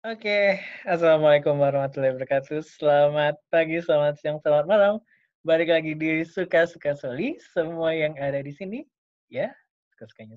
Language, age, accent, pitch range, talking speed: Indonesian, 20-39, native, 120-150 Hz, 135 wpm